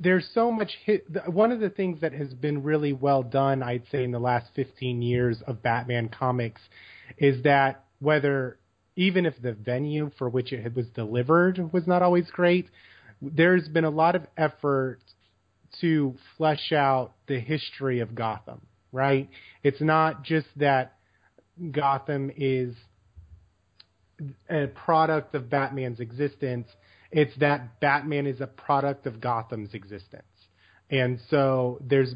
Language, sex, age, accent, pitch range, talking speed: English, male, 30-49, American, 125-155 Hz, 145 wpm